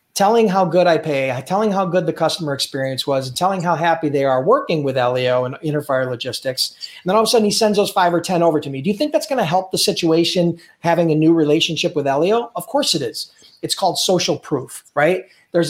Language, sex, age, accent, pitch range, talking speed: English, male, 40-59, American, 150-200 Hz, 245 wpm